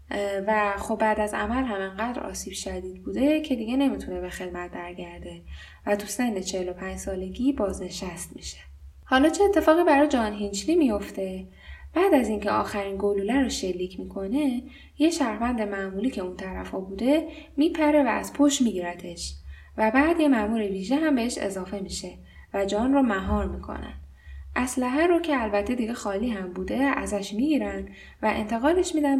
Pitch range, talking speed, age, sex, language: 190-275 Hz, 160 wpm, 10-29, female, Persian